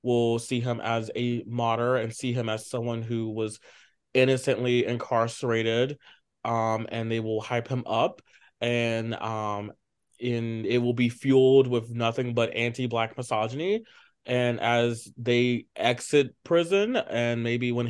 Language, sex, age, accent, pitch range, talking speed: English, male, 20-39, American, 115-135 Hz, 140 wpm